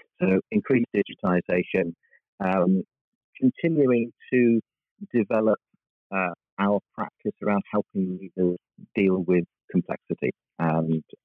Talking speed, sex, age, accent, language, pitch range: 90 wpm, male, 40-59, British, English, 80-95 Hz